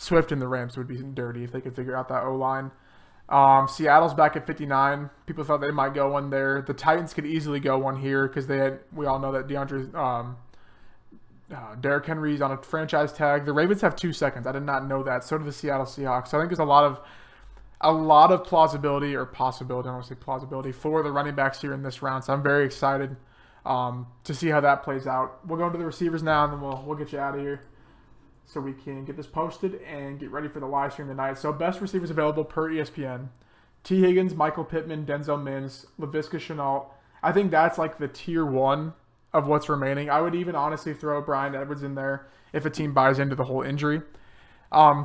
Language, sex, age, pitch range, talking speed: English, male, 20-39, 135-155 Hz, 235 wpm